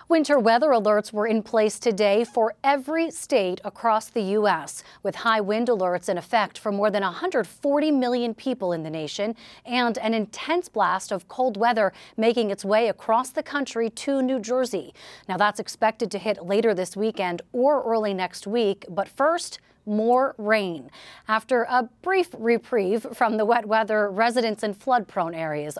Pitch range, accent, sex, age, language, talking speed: 200-250 Hz, American, female, 30-49, English, 165 wpm